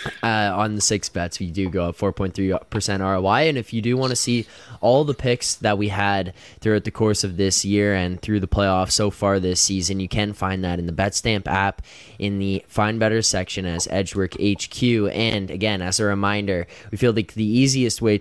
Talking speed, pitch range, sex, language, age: 215 wpm, 95-110 Hz, male, English, 10-29